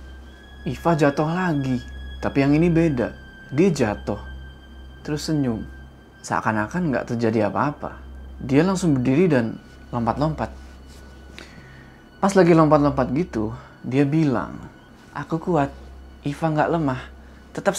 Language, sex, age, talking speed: Indonesian, male, 20-39, 110 wpm